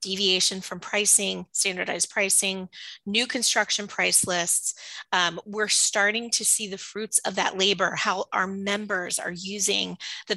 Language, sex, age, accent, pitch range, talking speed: English, female, 30-49, American, 190-215 Hz, 145 wpm